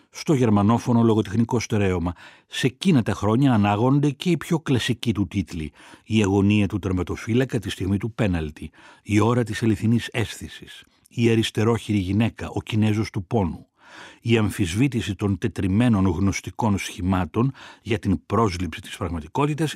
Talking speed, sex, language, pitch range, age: 140 wpm, male, Greek, 100-125 Hz, 60-79